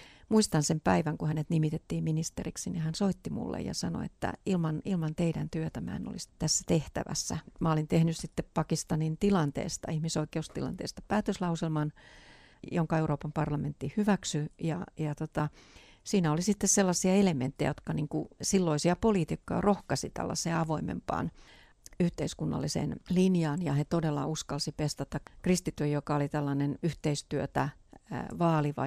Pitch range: 150-175 Hz